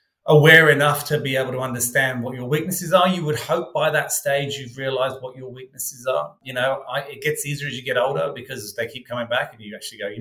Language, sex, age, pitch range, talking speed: English, male, 30-49, 120-155 Hz, 245 wpm